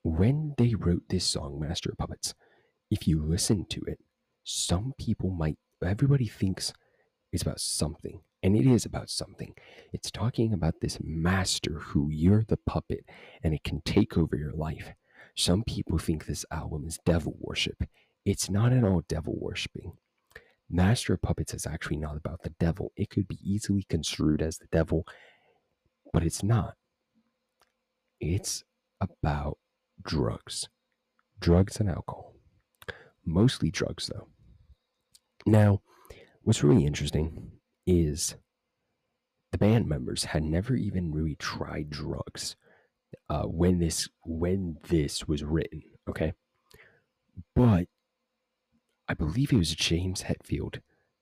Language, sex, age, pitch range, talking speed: English, male, 30-49, 80-105 Hz, 135 wpm